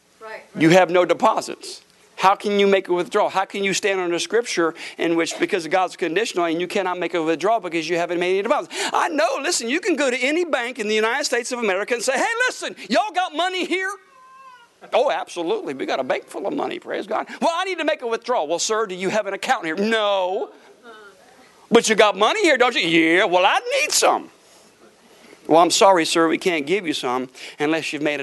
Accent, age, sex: American, 50-69, male